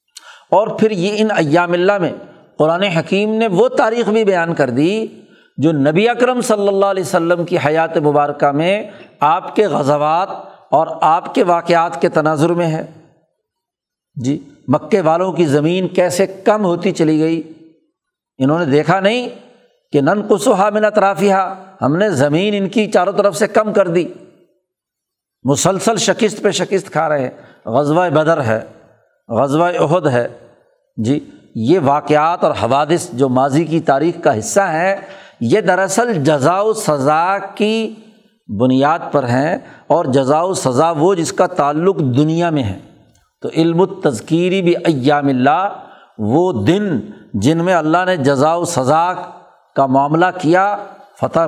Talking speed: 150 wpm